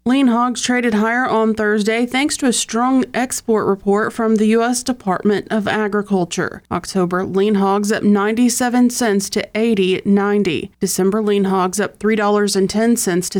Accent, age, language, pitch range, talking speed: American, 30-49, English, 200-240 Hz, 145 wpm